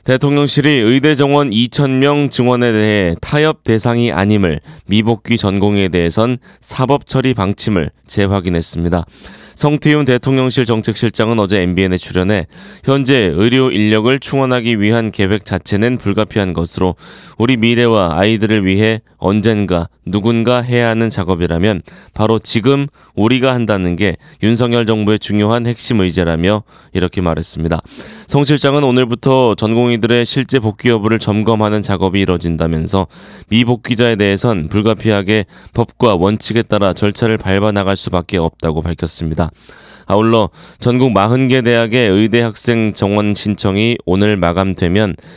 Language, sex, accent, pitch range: Korean, male, native, 95-120 Hz